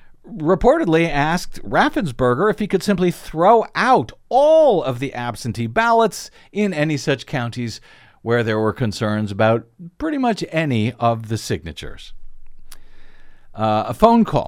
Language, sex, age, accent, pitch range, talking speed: English, male, 50-69, American, 115-175 Hz, 135 wpm